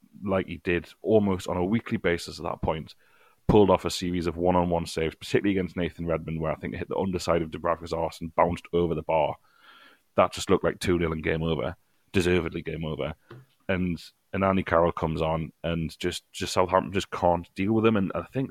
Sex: male